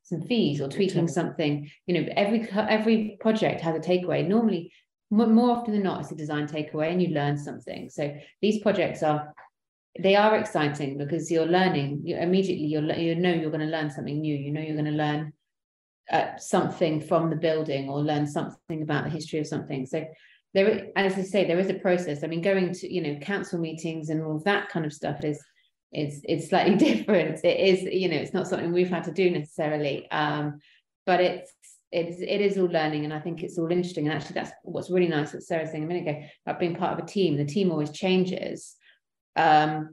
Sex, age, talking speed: female, 30-49, 210 wpm